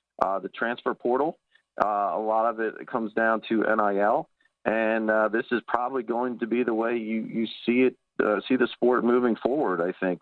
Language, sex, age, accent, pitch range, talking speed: English, male, 40-59, American, 105-120 Hz, 205 wpm